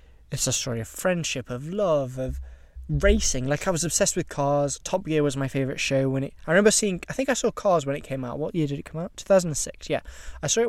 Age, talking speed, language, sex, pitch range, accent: 20-39, 275 wpm, English, male, 115-150 Hz, British